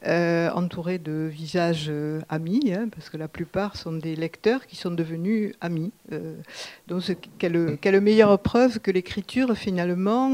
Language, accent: French, French